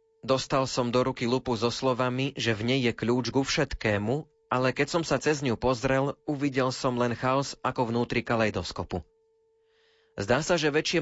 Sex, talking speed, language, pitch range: male, 175 wpm, Slovak, 115-150 Hz